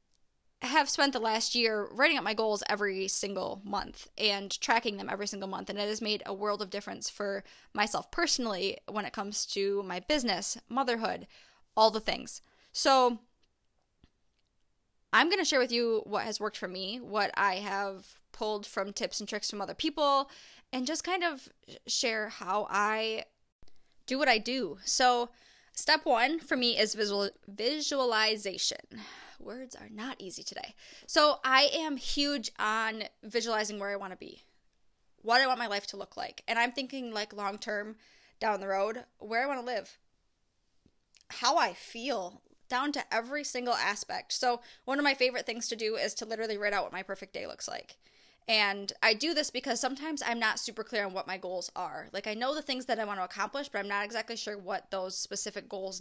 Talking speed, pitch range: 190 wpm, 205-255 Hz